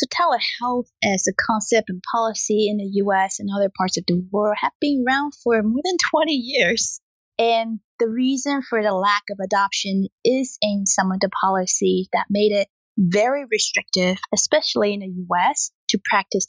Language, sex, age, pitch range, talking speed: English, female, 20-39, 195-240 Hz, 180 wpm